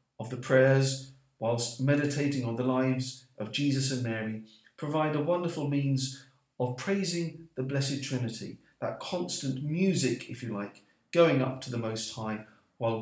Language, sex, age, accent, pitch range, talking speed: English, male, 50-69, British, 120-145 Hz, 155 wpm